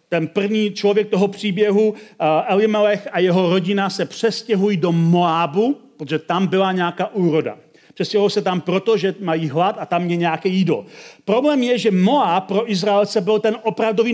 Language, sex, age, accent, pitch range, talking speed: Czech, male, 40-59, native, 155-205 Hz, 165 wpm